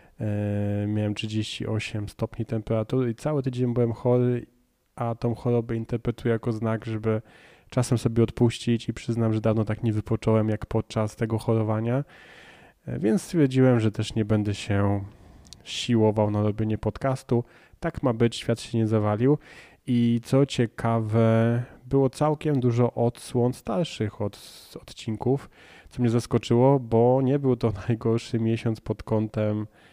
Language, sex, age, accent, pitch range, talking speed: Polish, male, 20-39, native, 110-120 Hz, 140 wpm